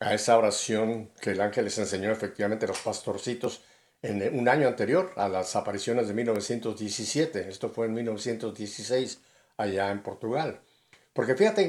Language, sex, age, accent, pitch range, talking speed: Spanish, male, 60-79, Mexican, 115-155 Hz, 155 wpm